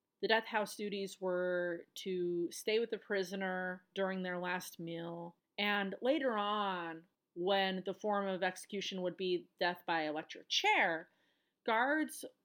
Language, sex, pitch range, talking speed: English, female, 185-240 Hz, 140 wpm